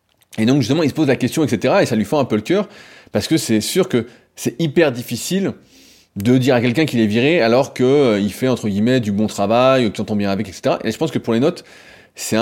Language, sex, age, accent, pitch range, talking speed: French, male, 20-39, French, 105-140 Hz, 255 wpm